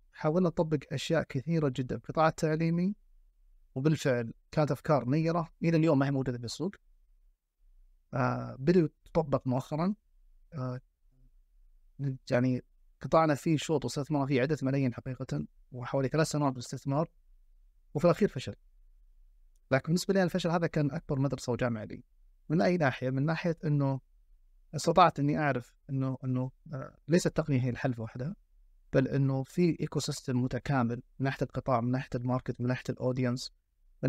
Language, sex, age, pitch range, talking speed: Arabic, male, 30-49, 125-160 Hz, 145 wpm